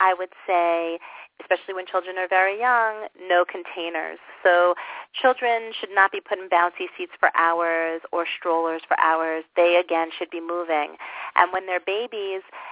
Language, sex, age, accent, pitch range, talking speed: English, female, 40-59, American, 165-195 Hz, 165 wpm